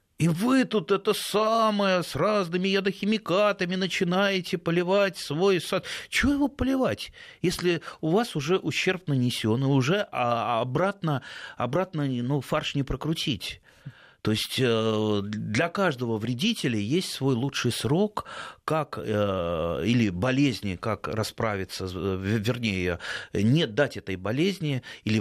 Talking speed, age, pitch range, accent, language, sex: 115 wpm, 30-49, 110-175 Hz, native, Russian, male